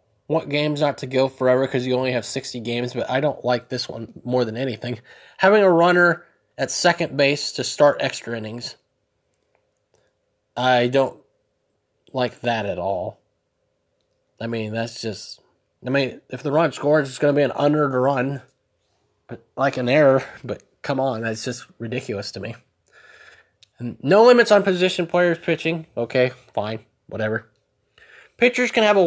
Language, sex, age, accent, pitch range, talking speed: English, male, 20-39, American, 120-175 Hz, 165 wpm